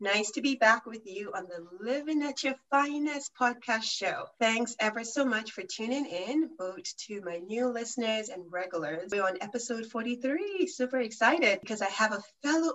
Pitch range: 195-260 Hz